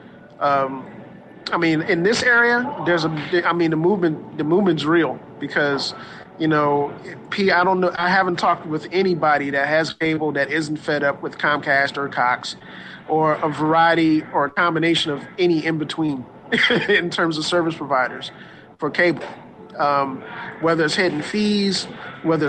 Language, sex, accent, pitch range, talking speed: English, male, American, 150-180 Hz, 165 wpm